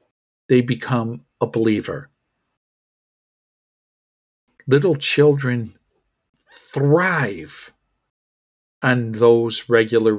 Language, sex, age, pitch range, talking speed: English, male, 50-69, 115-145 Hz, 60 wpm